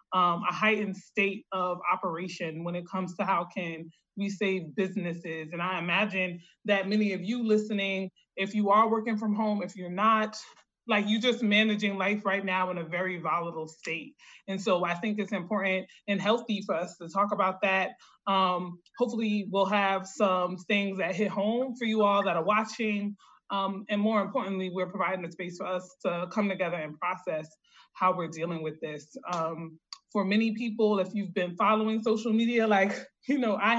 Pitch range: 185-215 Hz